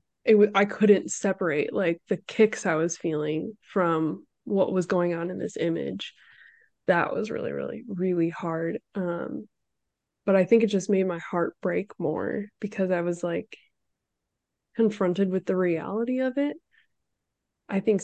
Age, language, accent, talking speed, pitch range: 20-39, English, American, 160 wpm, 180-215 Hz